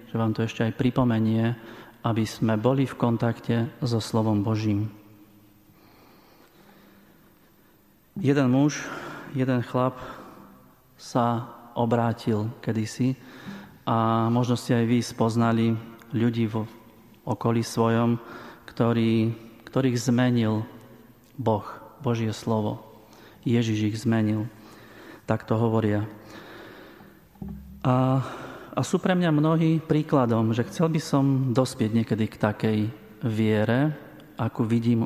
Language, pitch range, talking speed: Slovak, 110-130 Hz, 105 wpm